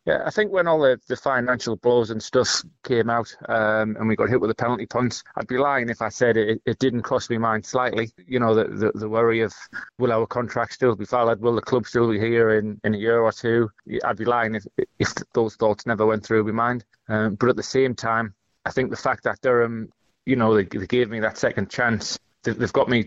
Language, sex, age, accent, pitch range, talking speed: English, male, 30-49, British, 110-125 Hz, 250 wpm